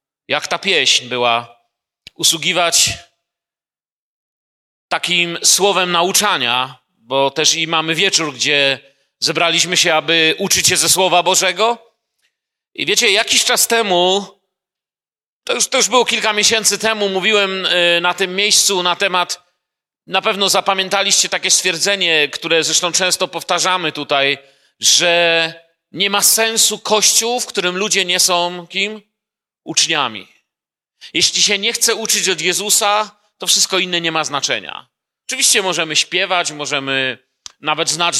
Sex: male